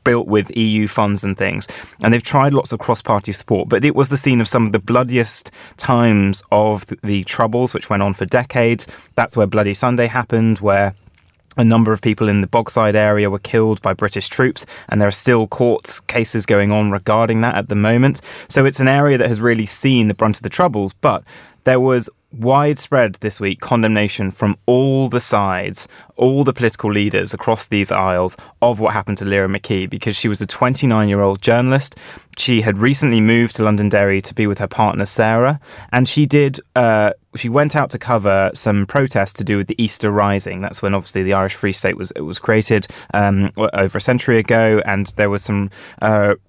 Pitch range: 100-120 Hz